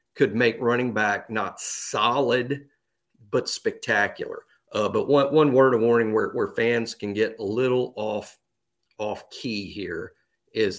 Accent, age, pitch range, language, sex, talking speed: American, 50-69, 120-180 Hz, English, male, 150 wpm